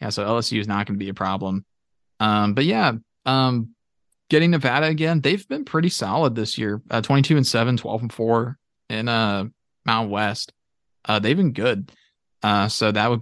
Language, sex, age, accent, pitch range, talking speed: English, male, 20-39, American, 105-125 Hz, 190 wpm